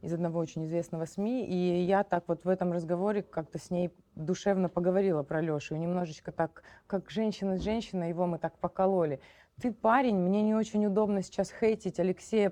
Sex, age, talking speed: female, 20-39, 180 wpm